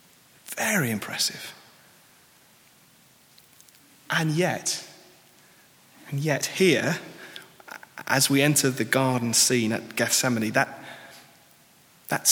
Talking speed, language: 85 wpm, English